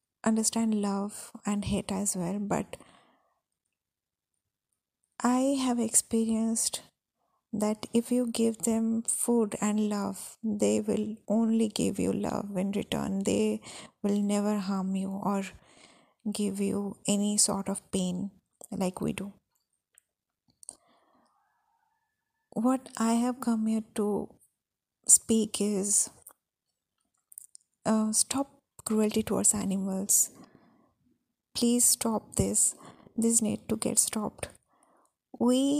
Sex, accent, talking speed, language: female, Indian, 105 wpm, English